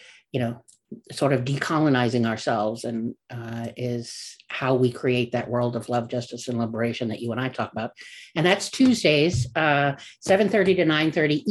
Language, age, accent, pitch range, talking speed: English, 50-69, American, 125-160 Hz, 165 wpm